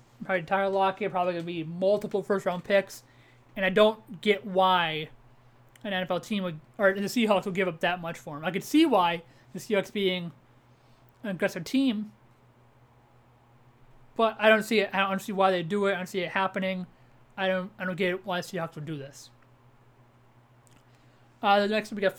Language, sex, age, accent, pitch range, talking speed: English, male, 30-49, American, 155-205 Hz, 190 wpm